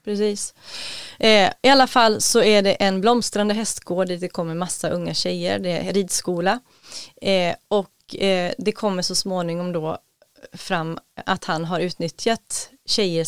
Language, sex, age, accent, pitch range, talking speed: English, female, 30-49, Swedish, 175-210 Hz, 125 wpm